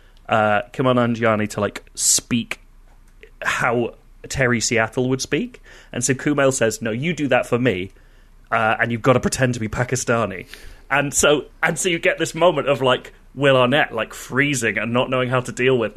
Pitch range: 115-145 Hz